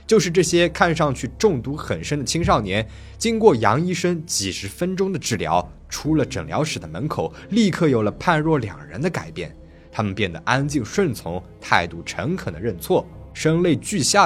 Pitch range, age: 105-155 Hz, 20-39